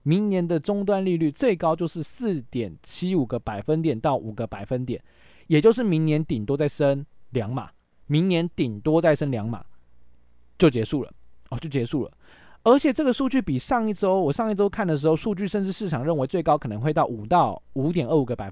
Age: 20-39